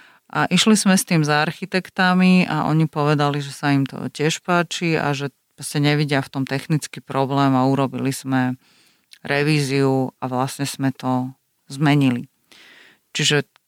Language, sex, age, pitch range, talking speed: Slovak, female, 40-59, 140-160 Hz, 150 wpm